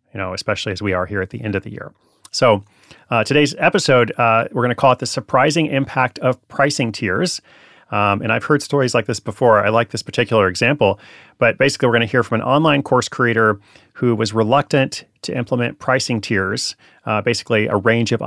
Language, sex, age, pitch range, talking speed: English, male, 30-49, 105-130 Hz, 215 wpm